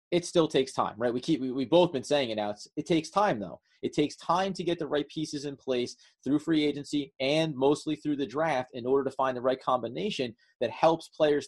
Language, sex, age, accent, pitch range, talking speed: English, male, 30-49, American, 125-155 Hz, 245 wpm